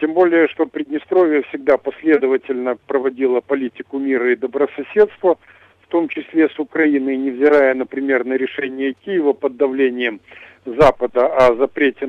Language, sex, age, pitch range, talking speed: Russian, male, 50-69, 135-175 Hz, 130 wpm